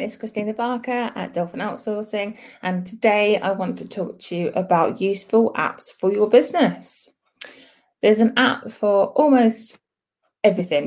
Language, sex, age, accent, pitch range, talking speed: English, female, 20-39, British, 175-220 Hz, 145 wpm